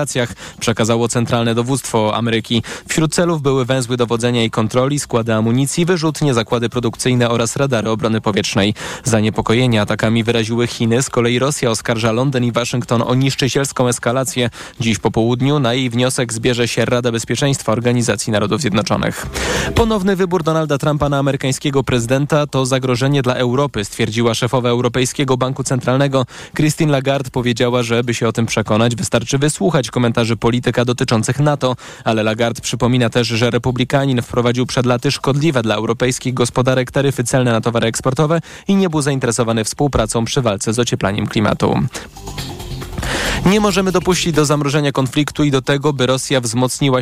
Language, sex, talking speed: Polish, male, 150 wpm